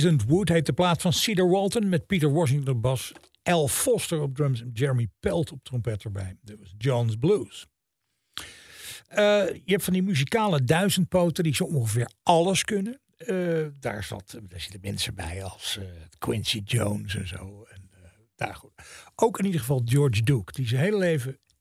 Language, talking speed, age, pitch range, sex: Dutch, 165 wpm, 60-79, 120-175 Hz, male